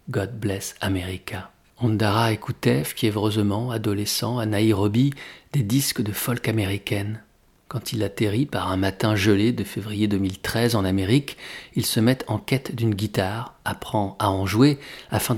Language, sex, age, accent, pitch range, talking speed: French, male, 40-59, French, 100-120 Hz, 155 wpm